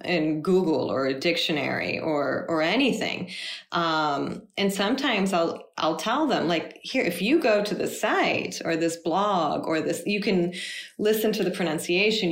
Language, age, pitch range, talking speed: Portuguese, 30-49, 160-195 Hz, 165 wpm